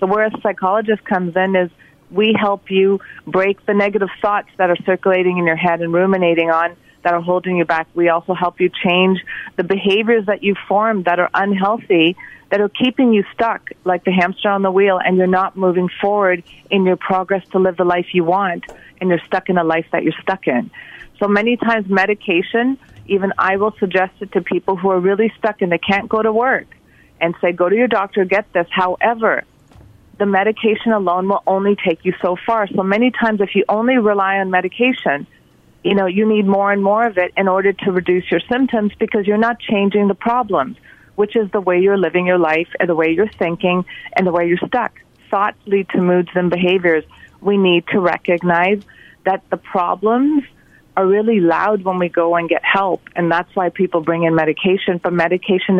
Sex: female